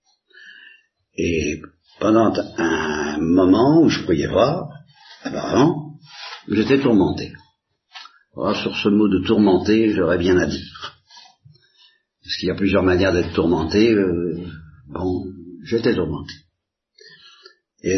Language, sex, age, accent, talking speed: Italian, male, 60-79, French, 115 wpm